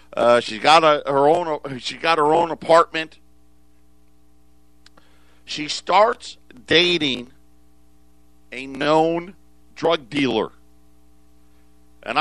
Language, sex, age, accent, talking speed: English, male, 50-69, American, 95 wpm